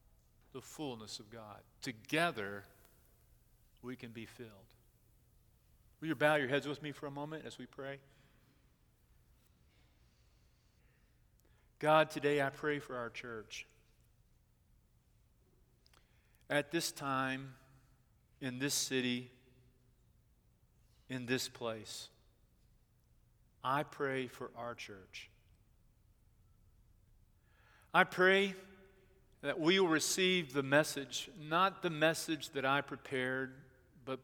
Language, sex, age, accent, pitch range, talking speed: English, male, 50-69, American, 115-145 Hz, 100 wpm